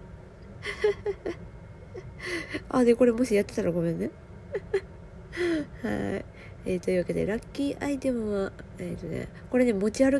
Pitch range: 185-270 Hz